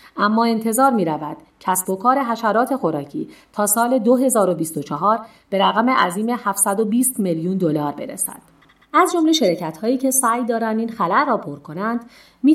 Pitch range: 180-255 Hz